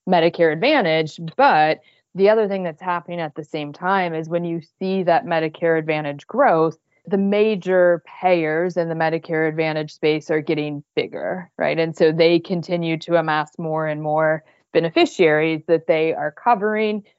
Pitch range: 155-175 Hz